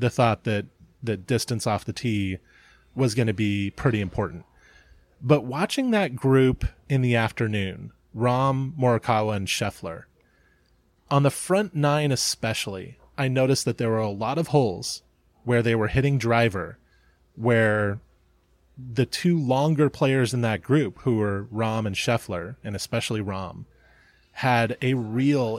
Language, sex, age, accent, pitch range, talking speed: English, male, 20-39, American, 110-135 Hz, 150 wpm